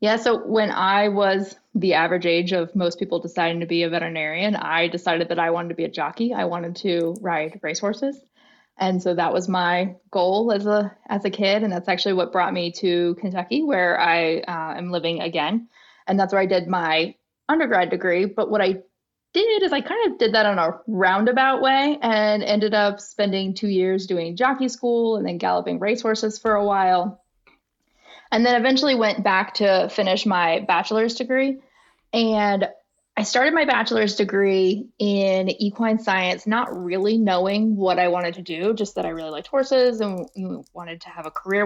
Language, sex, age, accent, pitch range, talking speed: English, female, 20-39, American, 180-220 Hz, 190 wpm